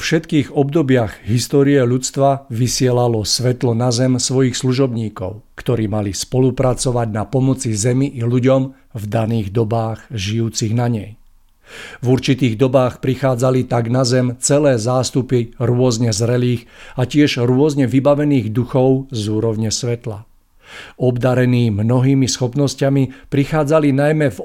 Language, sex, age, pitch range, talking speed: Czech, male, 50-69, 115-135 Hz, 120 wpm